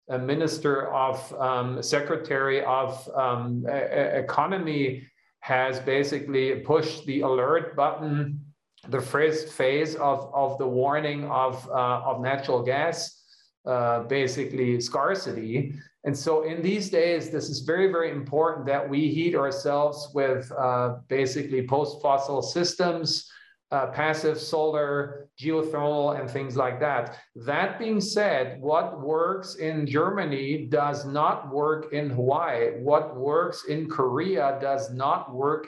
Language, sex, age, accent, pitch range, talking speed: English, male, 40-59, German, 130-155 Hz, 130 wpm